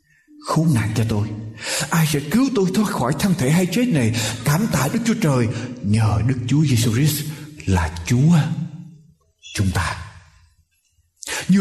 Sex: male